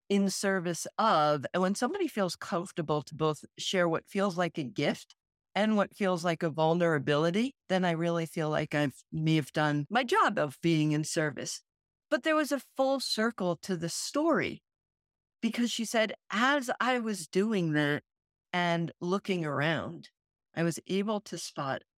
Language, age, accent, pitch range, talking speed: English, 50-69, American, 160-215 Hz, 170 wpm